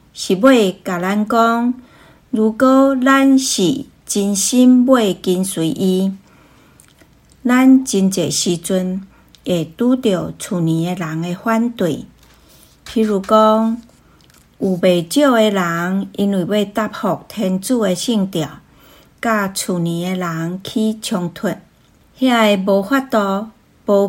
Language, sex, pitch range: Chinese, female, 175-225 Hz